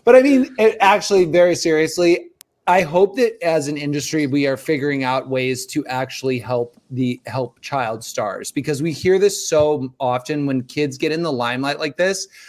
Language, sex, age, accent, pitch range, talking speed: English, male, 30-49, American, 135-175 Hz, 185 wpm